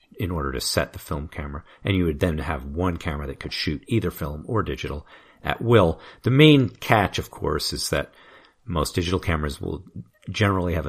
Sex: male